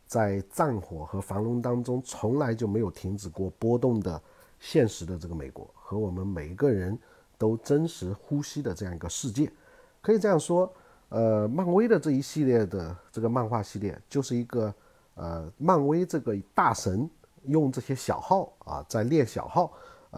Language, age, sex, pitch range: Chinese, 50-69, male, 95-145 Hz